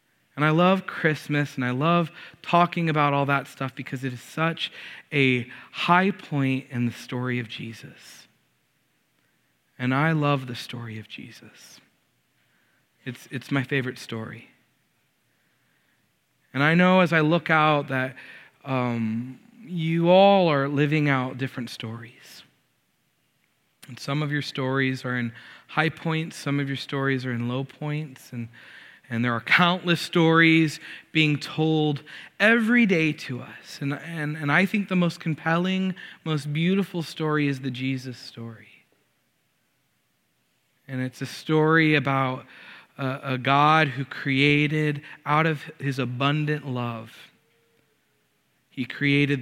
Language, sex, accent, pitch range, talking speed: English, male, American, 130-155 Hz, 135 wpm